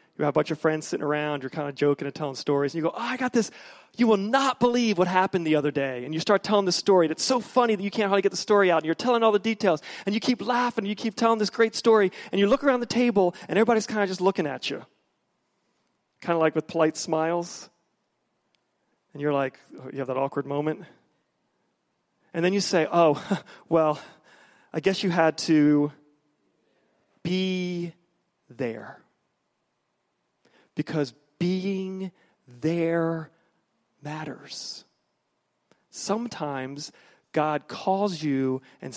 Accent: American